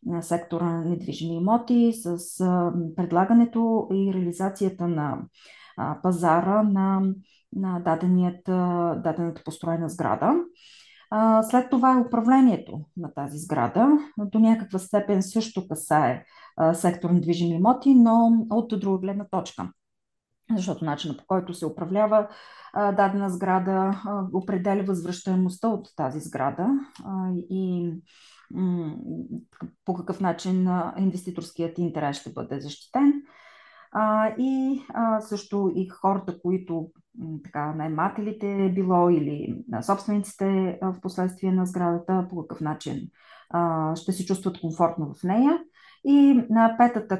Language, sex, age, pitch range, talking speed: Bulgarian, female, 30-49, 170-210 Hz, 105 wpm